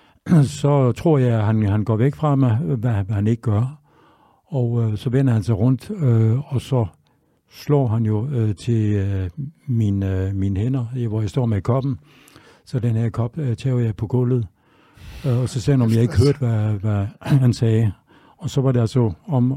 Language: English